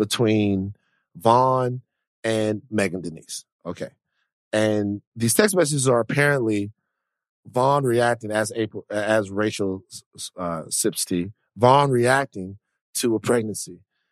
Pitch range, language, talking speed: 105-135 Hz, English, 110 wpm